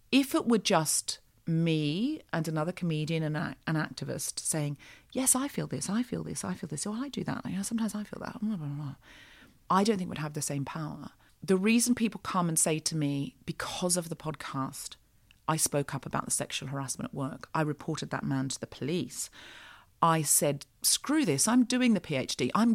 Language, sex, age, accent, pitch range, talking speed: English, female, 40-59, British, 145-205 Hz, 200 wpm